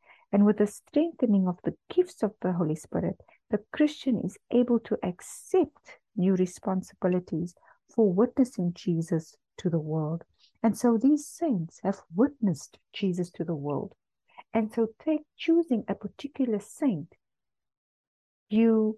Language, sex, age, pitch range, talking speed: English, female, 50-69, 180-225 Hz, 135 wpm